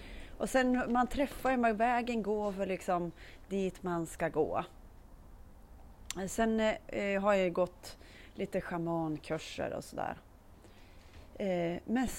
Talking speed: 120 wpm